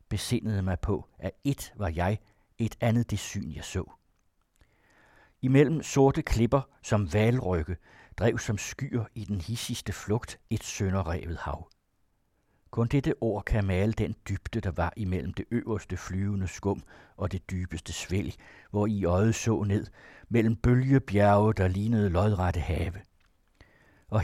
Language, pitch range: Danish, 95-115 Hz